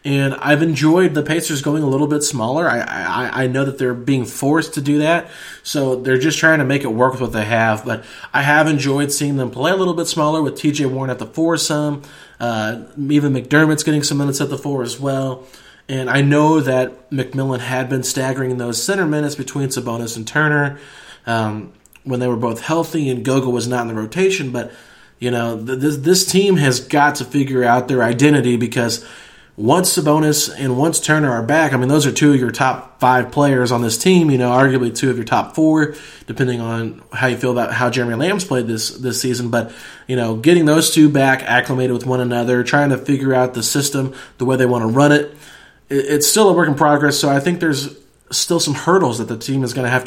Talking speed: 230 wpm